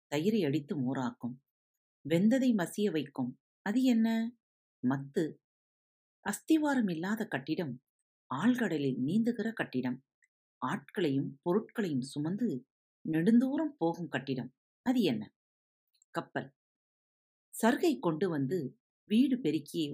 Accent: native